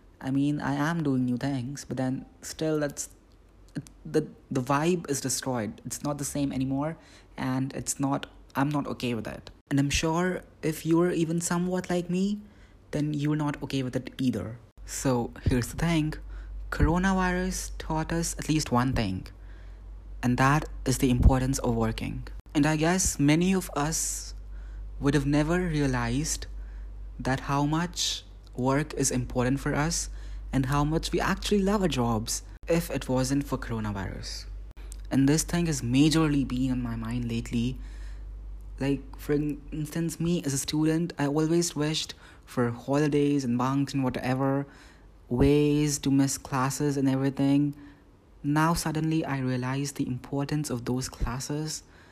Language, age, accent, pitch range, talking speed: English, 20-39, Indian, 120-150 Hz, 155 wpm